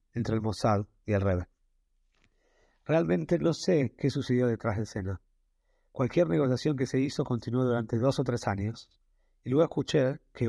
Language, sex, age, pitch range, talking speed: Spanish, male, 30-49, 105-130 Hz, 165 wpm